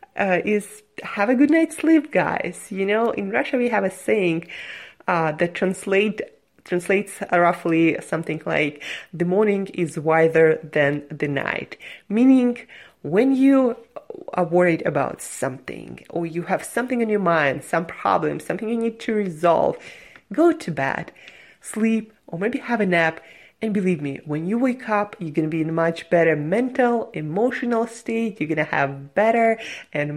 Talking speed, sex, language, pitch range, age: 165 wpm, female, English, 160-210 Hz, 30-49